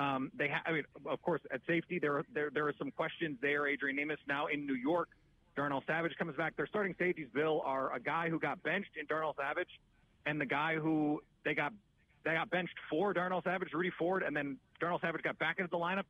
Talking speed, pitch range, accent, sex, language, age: 235 wpm, 145-185 Hz, American, male, English, 40-59